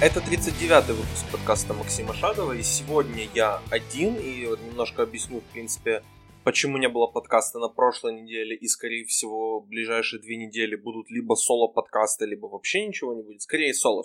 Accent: native